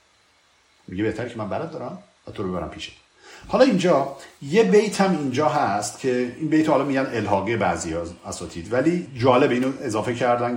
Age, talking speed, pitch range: 50-69, 160 wpm, 115-165 Hz